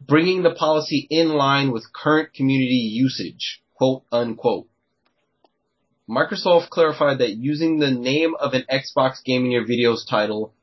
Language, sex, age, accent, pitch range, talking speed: English, male, 30-49, American, 120-150 Hz, 140 wpm